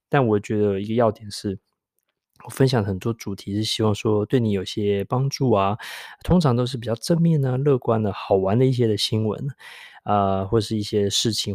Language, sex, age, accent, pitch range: Chinese, male, 20-39, native, 100-120 Hz